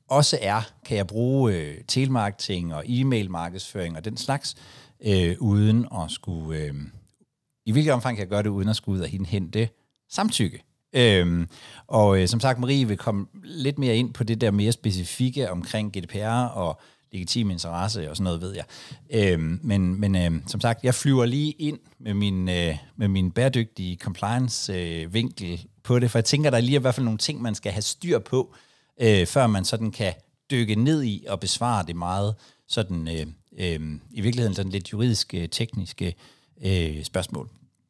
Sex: male